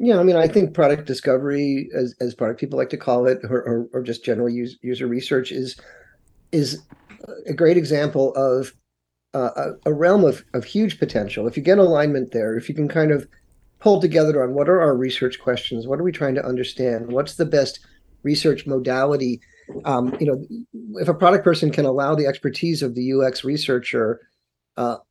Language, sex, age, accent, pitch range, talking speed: English, male, 40-59, American, 125-150 Hz, 200 wpm